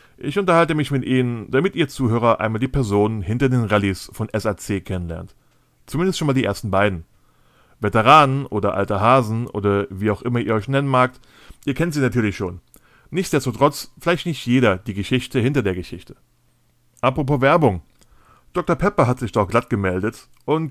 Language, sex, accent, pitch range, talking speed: German, male, German, 110-145 Hz, 170 wpm